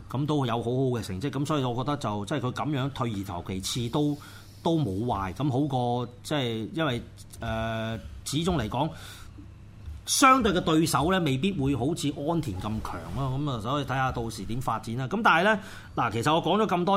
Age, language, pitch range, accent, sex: 30-49, Chinese, 115-165 Hz, native, male